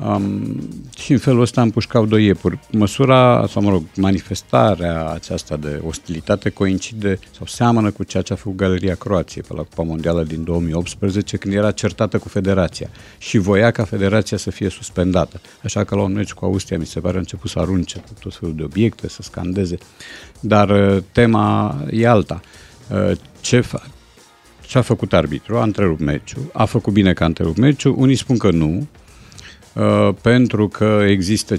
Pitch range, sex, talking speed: 85-110 Hz, male, 175 wpm